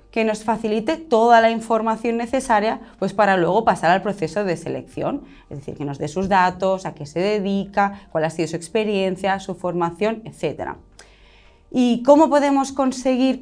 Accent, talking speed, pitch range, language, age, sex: Spanish, 170 wpm, 180-245 Hz, Spanish, 20-39, female